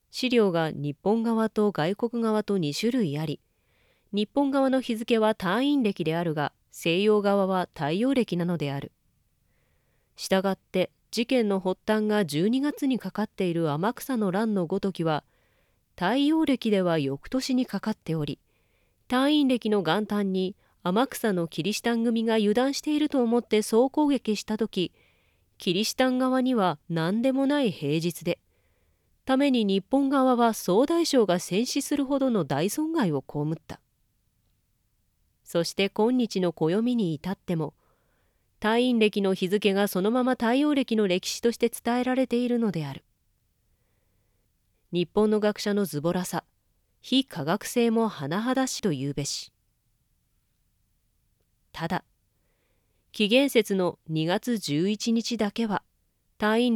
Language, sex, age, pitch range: Japanese, female, 30-49, 155-235 Hz